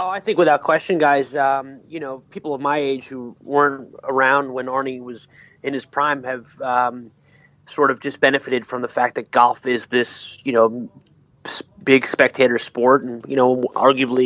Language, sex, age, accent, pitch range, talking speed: English, male, 20-39, American, 120-135 Hz, 185 wpm